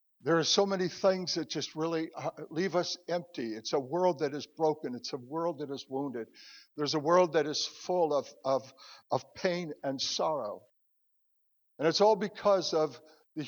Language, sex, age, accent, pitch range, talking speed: English, male, 60-79, American, 155-180 Hz, 185 wpm